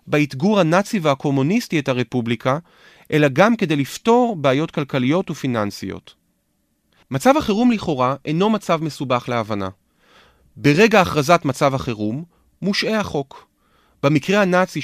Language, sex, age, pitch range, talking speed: Hebrew, male, 30-49, 125-185 Hz, 110 wpm